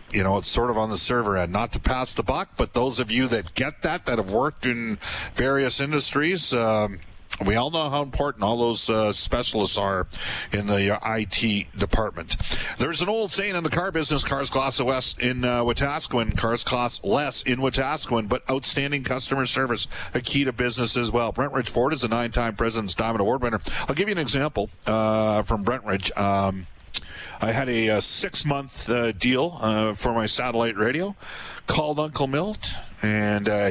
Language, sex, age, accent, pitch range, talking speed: English, male, 50-69, American, 105-135 Hz, 190 wpm